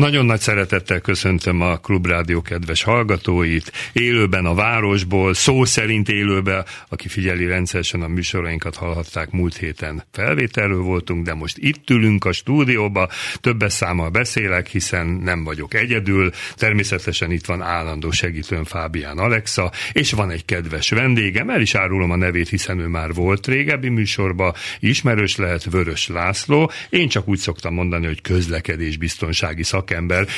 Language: Hungarian